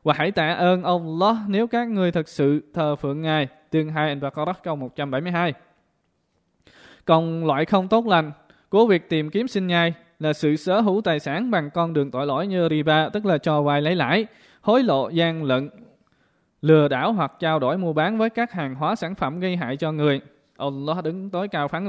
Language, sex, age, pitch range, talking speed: Vietnamese, male, 20-39, 150-195 Hz, 205 wpm